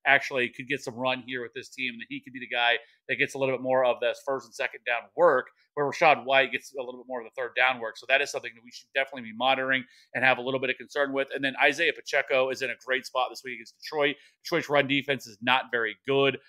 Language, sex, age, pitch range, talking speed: English, male, 30-49, 125-140 Hz, 290 wpm